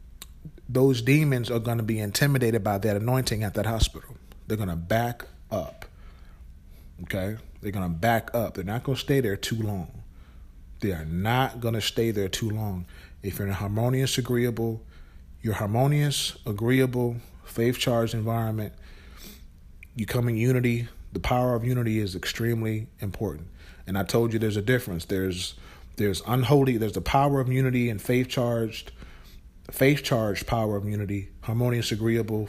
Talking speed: 165 wpm